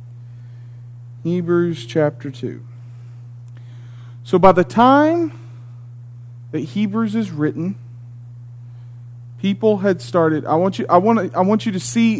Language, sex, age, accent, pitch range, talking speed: English, male, 40-59, American, 120-195 Hz, 120 wpm